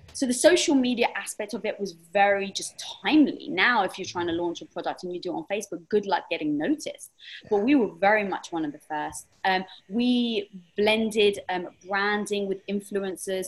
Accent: British